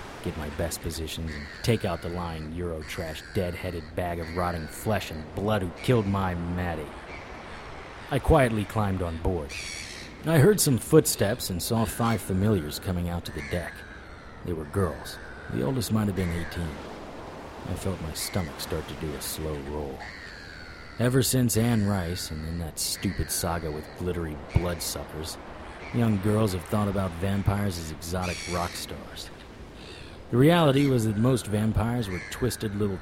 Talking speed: 160 wpm